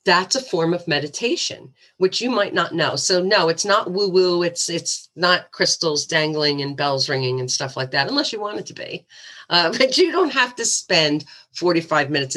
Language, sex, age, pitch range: English, female, 50-69, 155-205 Hz